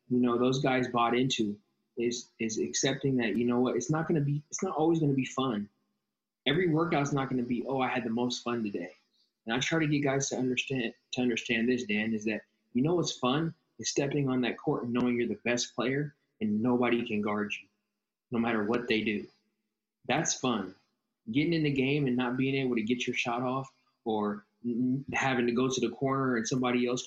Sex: male